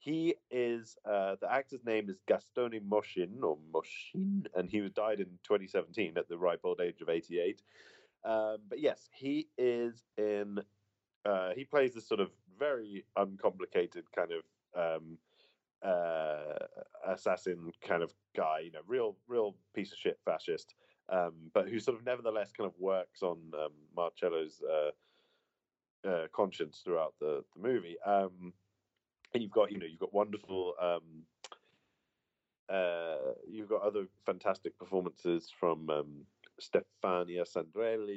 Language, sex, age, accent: English, male, 30-49, British